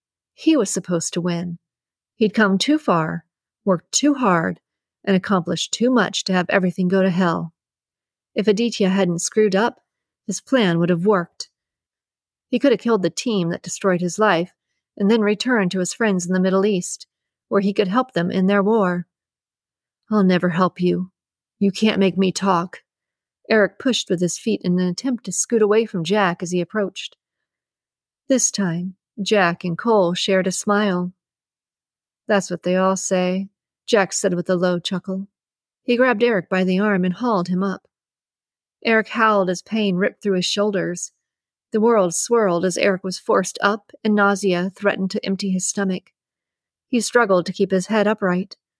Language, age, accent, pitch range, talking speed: English, 40-59, American, 180-215 Hz, 175 wpm